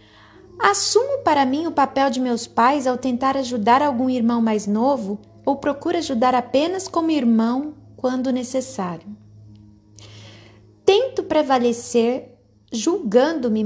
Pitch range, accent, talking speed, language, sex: 205-260 Hz, Brazilian, 115 wpm, Portuguese, female